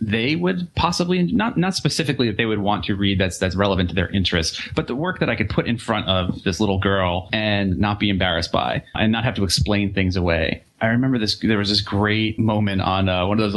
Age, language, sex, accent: 30-49, English, male, American